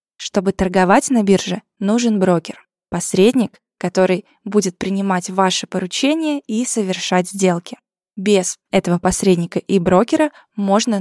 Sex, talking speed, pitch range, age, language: female, 115 wpm, 185-225 Hz, 20-39, Russian